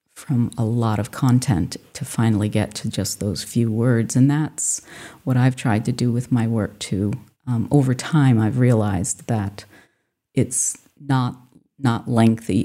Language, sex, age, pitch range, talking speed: English, female, 40-59, 110-130 Hz, 160 wpm